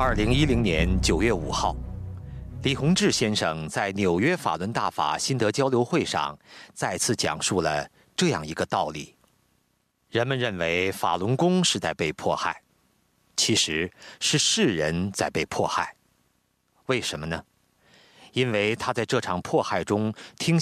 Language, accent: Chinese, native